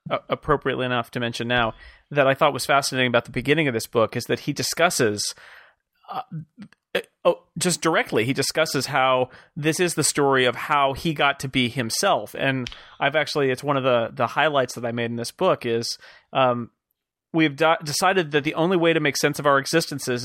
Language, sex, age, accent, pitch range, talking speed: English, male, 30-49, American, 130-160 Hz, 205 wpm